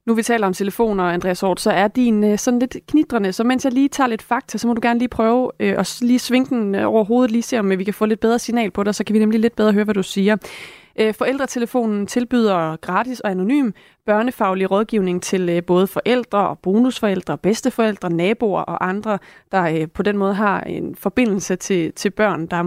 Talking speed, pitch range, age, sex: 205 wpm, 185-230 Hz, 30-49, female